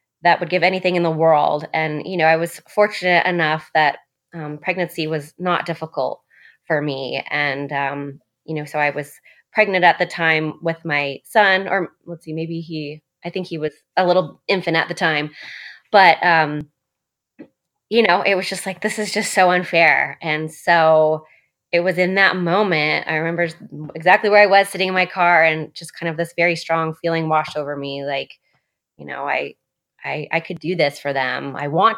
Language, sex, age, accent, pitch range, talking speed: English, female, 20-39, American, 155-175 Hz, 195 wpm